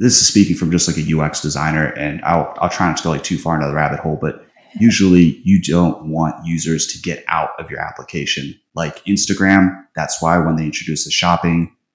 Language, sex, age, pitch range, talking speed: English, male, 30-49, 80-90 Hz, 220 wpm